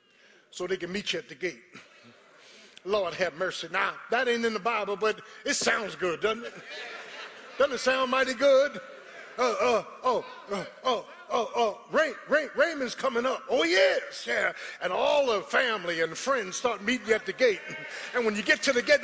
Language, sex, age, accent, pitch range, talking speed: English, male, 50-69, American, 215-330 Hz, 200 wpm